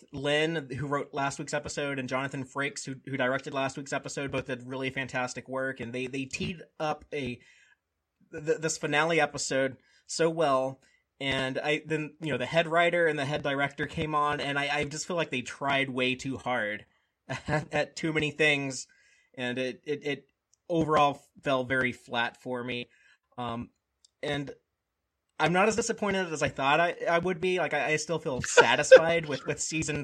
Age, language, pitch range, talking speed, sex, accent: 30-49, English, 130-160 Hz, 185 wpm, male, American